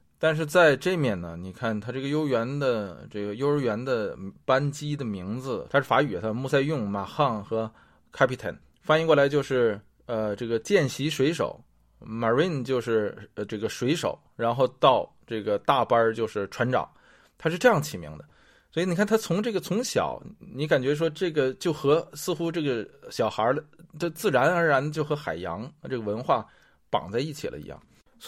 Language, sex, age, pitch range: English, male, 20-39, 105-145 Hz